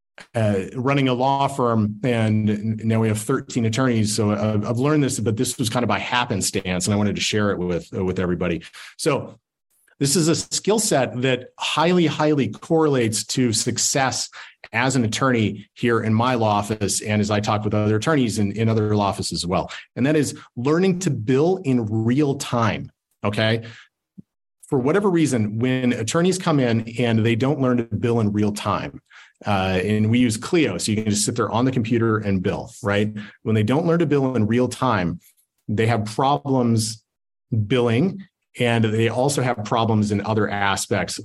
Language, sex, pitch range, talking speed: English, male, 105-130 Hz, 190 wpm